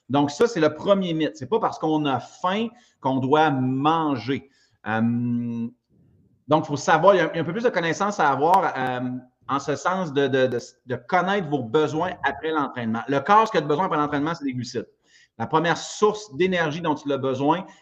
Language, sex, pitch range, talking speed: French, male, 135-180 Hz, 220 wpm